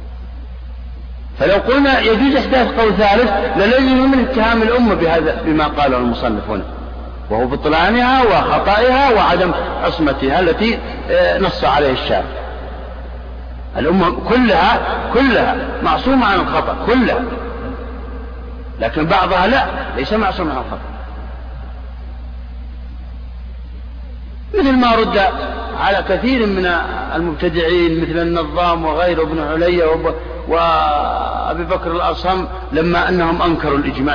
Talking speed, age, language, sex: 100 wpm, 50-69, Arabic, male